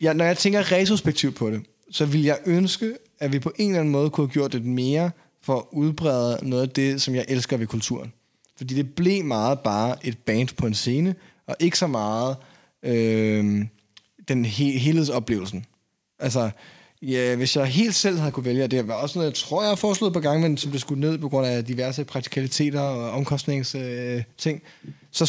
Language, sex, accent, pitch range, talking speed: Danish, male, native, 130-175 Hz, 205 wpm